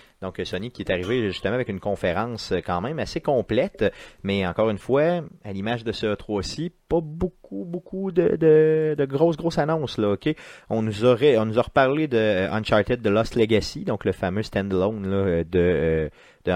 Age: 30-49